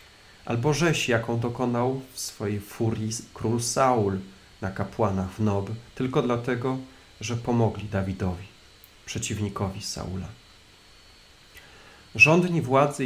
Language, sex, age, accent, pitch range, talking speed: Polish, male, 40-59, native, 95-120 Hz, 100 wpm